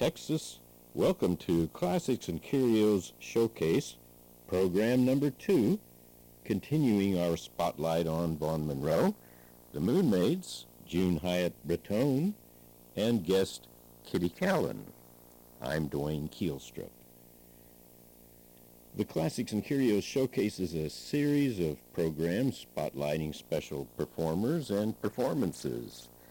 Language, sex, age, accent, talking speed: English, male, 60-79, American, 100 wpm